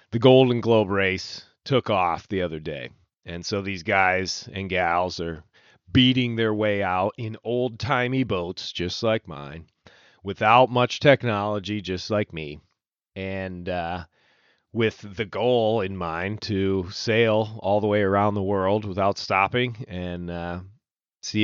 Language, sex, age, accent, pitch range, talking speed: English, male, 30-49, American, 95-120 Hz, 150 wpm